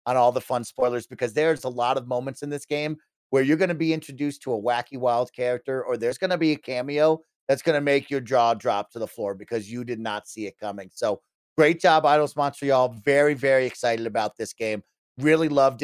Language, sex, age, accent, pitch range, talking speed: English, male, 30-49, American, 125-150 Hz, 235 wpm